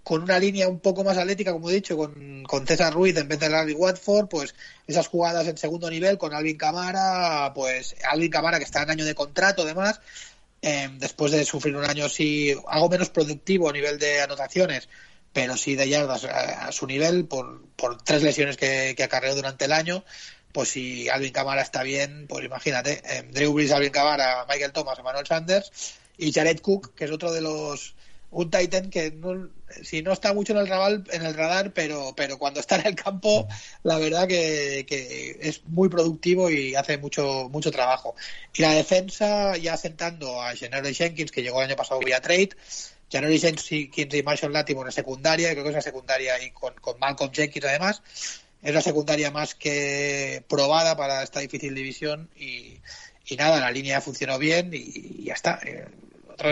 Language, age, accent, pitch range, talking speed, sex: Spanish, 30-49, Spanish, 140-170 Hz, 195 wpm, male